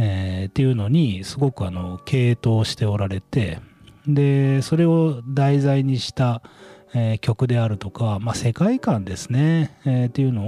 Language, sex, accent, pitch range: Japanese, male, native, 100-150 Hz